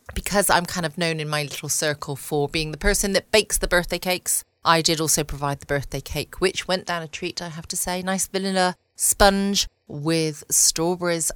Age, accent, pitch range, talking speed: 30-49, British, 145-185 Hz, 205 wpm